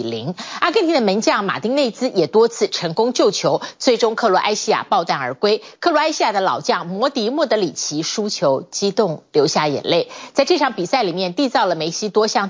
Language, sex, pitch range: Chinese, female, 190-260 Hz